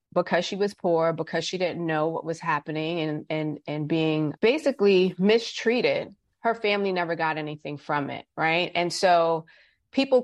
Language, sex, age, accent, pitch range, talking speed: English, female, 30-49, American, 160-180 Hz, 165 wpm